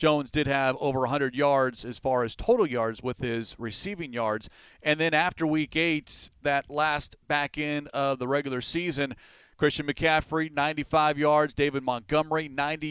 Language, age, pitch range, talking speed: English, 40-59, 130-150 Hz, 165 wpm